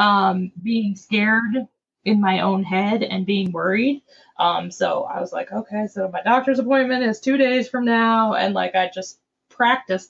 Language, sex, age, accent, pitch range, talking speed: English, female, 20-39, American, 190-265 Hz, 180 wpm